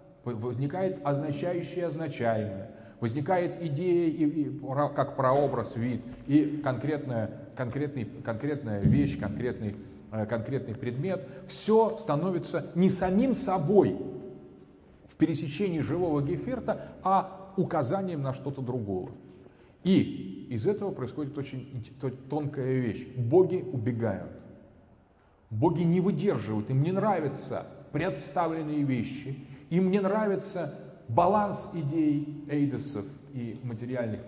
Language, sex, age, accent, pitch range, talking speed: Russian, male, 30-49, native, 115-155 Hz, 95 wpm